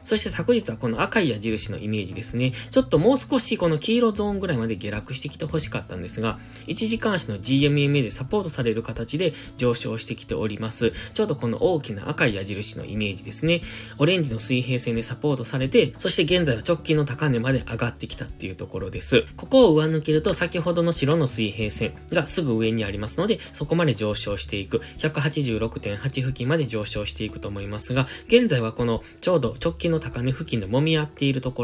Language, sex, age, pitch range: Japanese, male, 20-39, 115-165 Hz